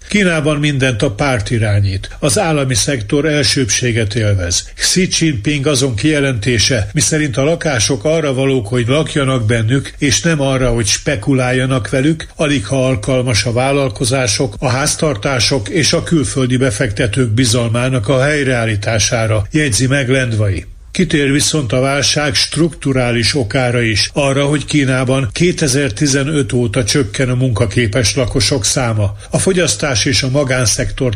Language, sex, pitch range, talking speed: Hungarian, male, 120-145 Hz, 125 wpm